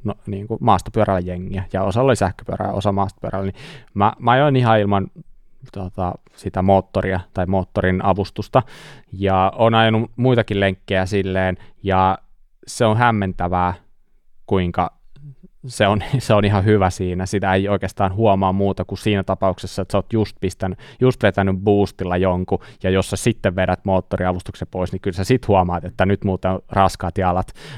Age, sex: 20-39, male